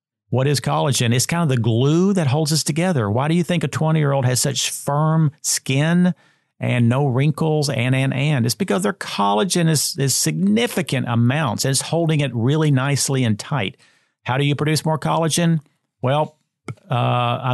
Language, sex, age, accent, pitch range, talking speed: English, male, 40-59, American, 120-155 Hz, 175 wpm